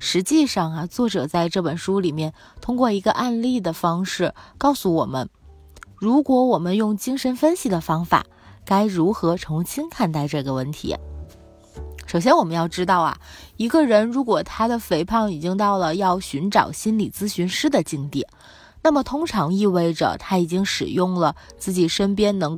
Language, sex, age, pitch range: Chinese, female, 20-39, 155-225 Hz